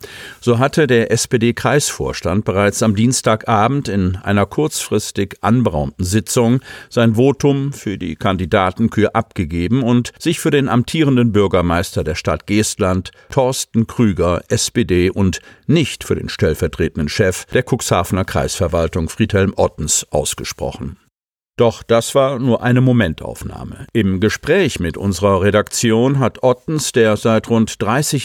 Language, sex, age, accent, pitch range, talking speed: German, male, 50-69, German, 95-125 Hz, 125 wpm